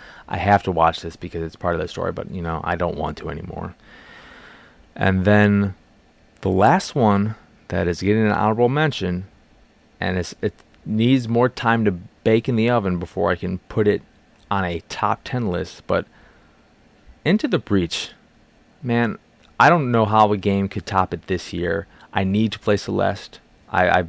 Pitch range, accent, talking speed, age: 85-105 Hz, American, 185 wpm, 20-39